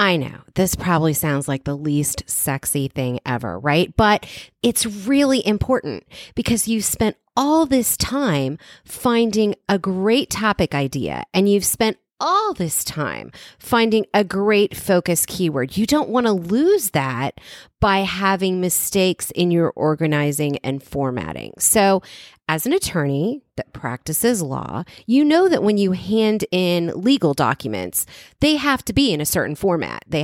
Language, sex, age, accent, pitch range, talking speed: English, female, 30-49, American, 160-225 Hz, 150 wpm